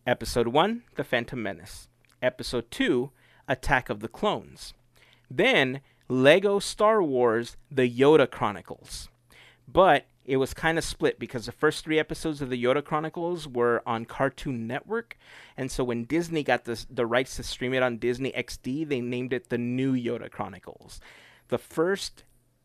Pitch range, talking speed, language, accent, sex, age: 120-145 Hz, 160 wpm, English, American, male, 30-49